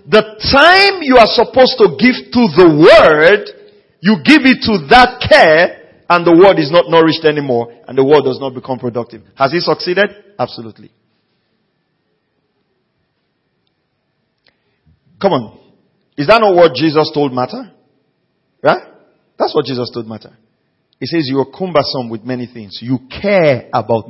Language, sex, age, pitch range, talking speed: English, male, 40-59, 135-195 Hz, 150 wpm